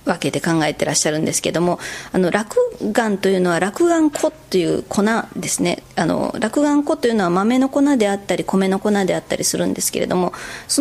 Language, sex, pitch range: Japanese, female, 185-290 Hz